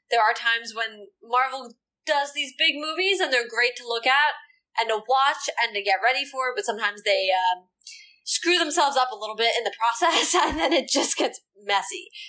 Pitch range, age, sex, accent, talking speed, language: 205-295 Hz, 10-29, female, American, 205 wpm, English